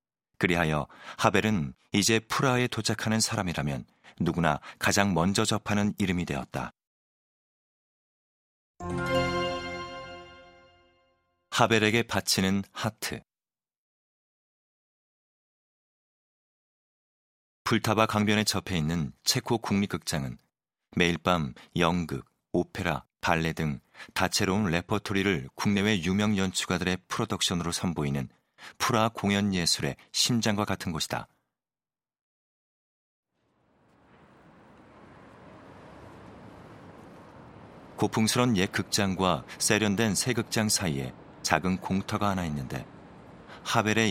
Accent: native